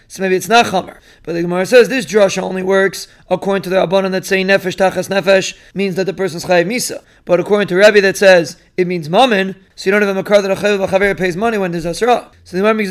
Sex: male